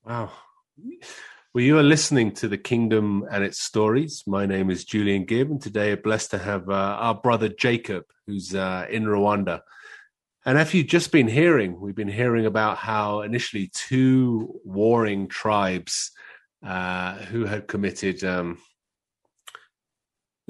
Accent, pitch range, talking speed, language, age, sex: British, 100-130 Hz, 145 wpm, English, 30-49, male